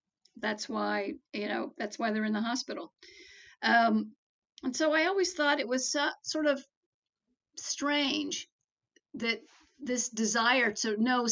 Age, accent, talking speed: 50-69, American, 140 wpm